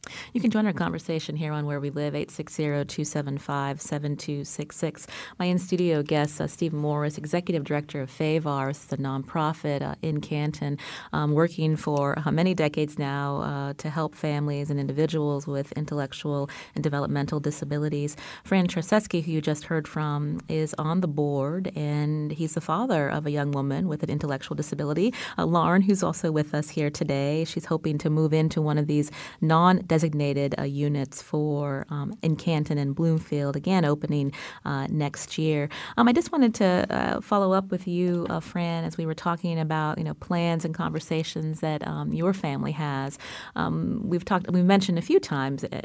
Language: English